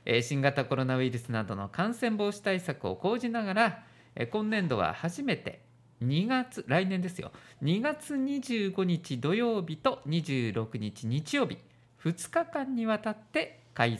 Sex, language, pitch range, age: male, Japanese, 125-205 Hz, 50-69